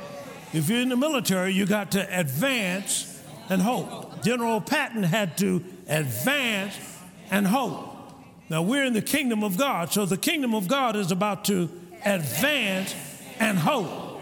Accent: American